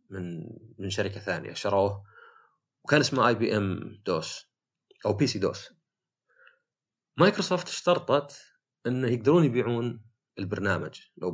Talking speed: 110 wpm